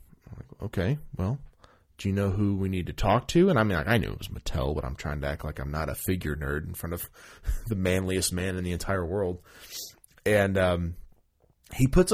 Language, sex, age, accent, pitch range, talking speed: English, male, 20-39, American, 85-105 Hz, 225 wpm